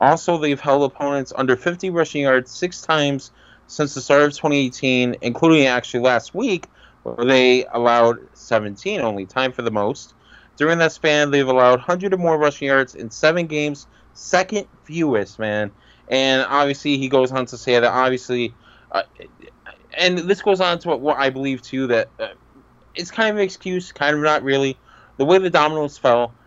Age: 20-39